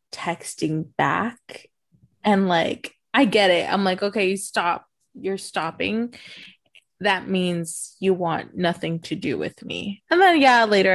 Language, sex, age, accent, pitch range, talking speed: English, female, 20-39, American, 180-245 Hz, 150 wpm